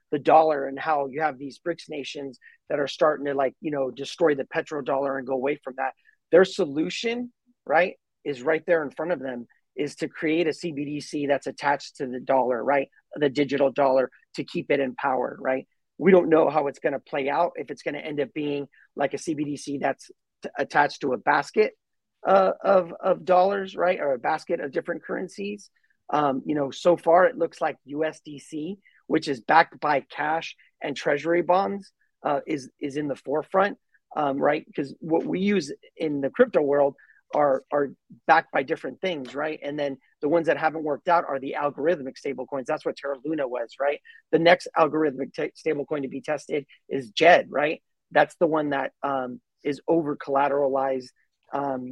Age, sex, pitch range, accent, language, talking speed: 30-49, male, 140-165 Hz, American, English, 195 wpm